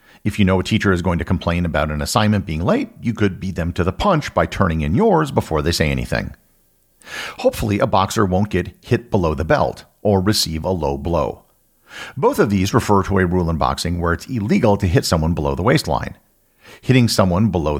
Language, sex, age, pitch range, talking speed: English, male, 50-69, 85-110 Hz, 215 wpm